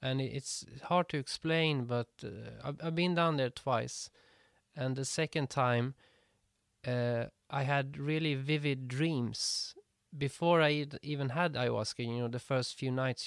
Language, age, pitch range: English, 20-39, 120-145 Hz